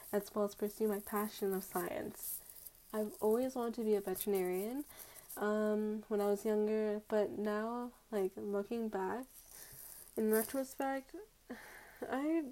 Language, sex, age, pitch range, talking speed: English, female, 10-29, 200-240 Hz, 135 wpm